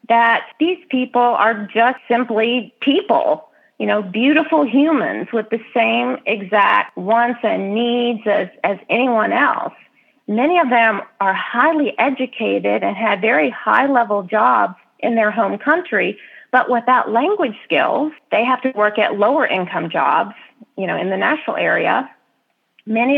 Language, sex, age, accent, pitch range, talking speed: English, female, 40-59, American, 210-270 Hz, 140 wpm